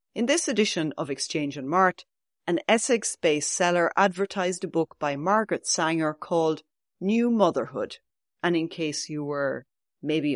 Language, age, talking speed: English, 30-49, 145 wpm